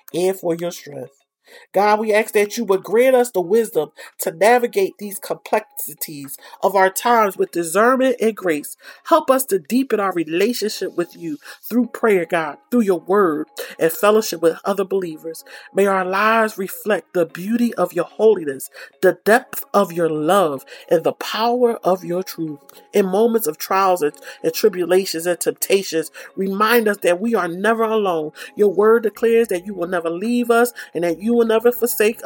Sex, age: male, 40-59